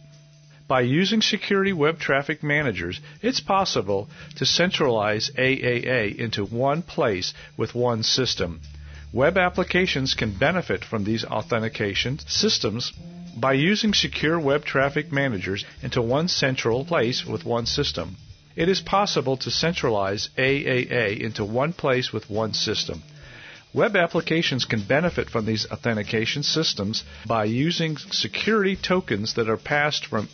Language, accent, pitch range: English, American, 110-160 Hz